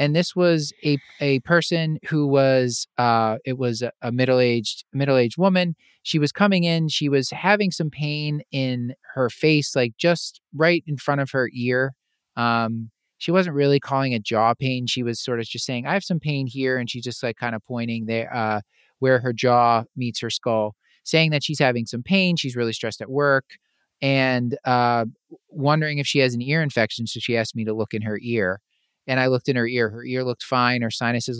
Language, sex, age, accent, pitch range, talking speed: English, male, 30-49, American, 120-150 Hz, 210 wpm